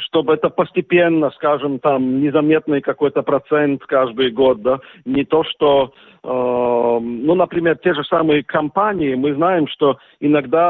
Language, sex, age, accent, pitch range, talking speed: Russian, male, 50-69, native, 145-185 Hz, 140 wpm